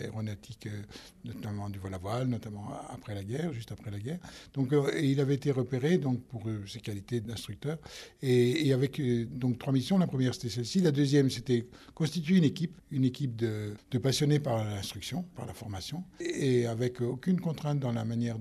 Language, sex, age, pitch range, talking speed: French, male, 60-79, 110-130 Hz, 185 wpm